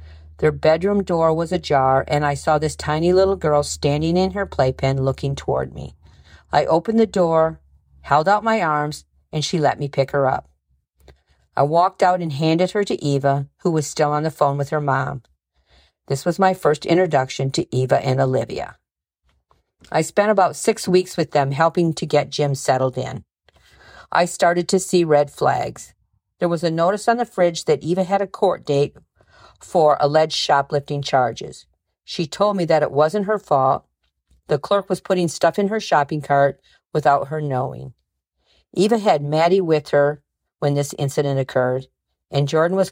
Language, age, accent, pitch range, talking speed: English, 50-69, American, 135-175 Hz, 180 wpm